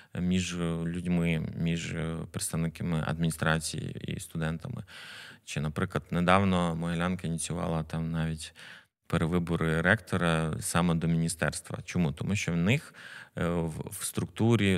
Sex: male